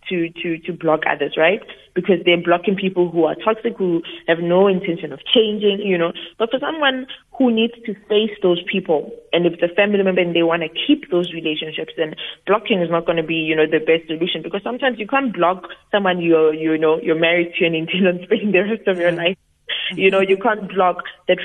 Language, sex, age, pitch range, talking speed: English, female, 30-49, 170-205 Hz, 225 wpm